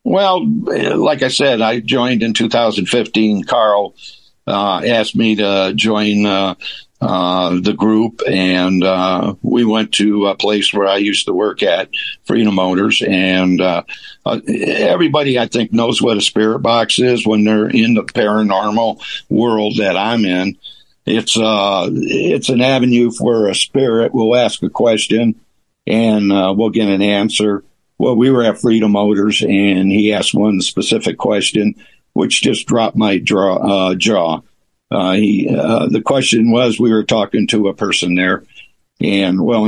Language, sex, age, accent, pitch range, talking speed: English, male, 60-79, American, 100-115 Hz, 160 wpm